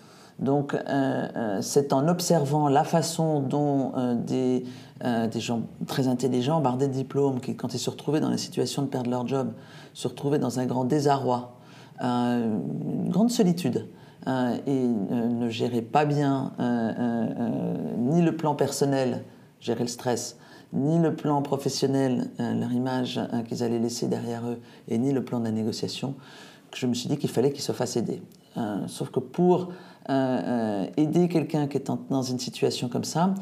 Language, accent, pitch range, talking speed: French, French, 120-155 Hz, 185 wpm